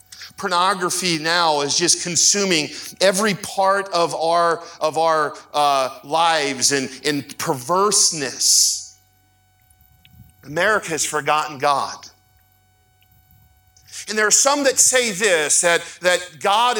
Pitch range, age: 170-230 Hz, 40-59